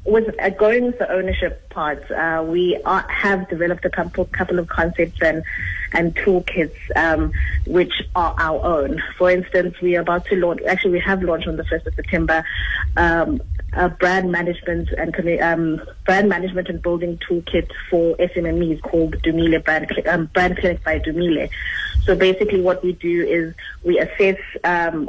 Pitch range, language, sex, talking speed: 160-180 Hz, English, female, 165 wpm